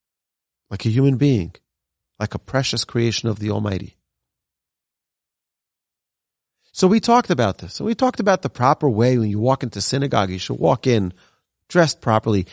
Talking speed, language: 165 wpm, English